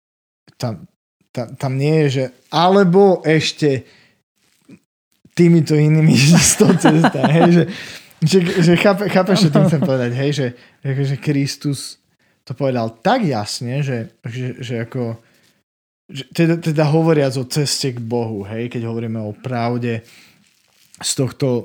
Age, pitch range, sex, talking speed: 20-39, 125-155 Hz, male, 130 wpm